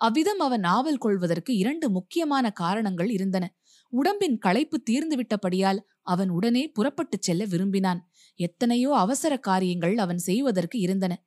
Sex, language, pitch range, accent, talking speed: female, Tamil, 190-250 Hz, native, 110 wpm